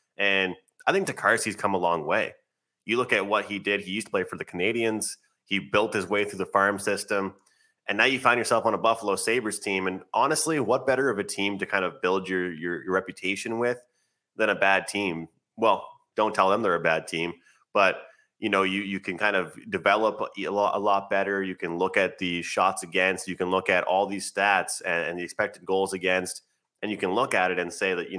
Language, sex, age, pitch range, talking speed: English, male, 20-39, 90-100 Hz, 235 wpm